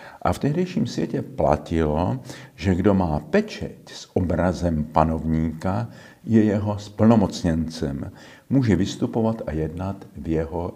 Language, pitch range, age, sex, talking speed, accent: Czech, 80-120 Hz, 50-69, male, 115 wpm, native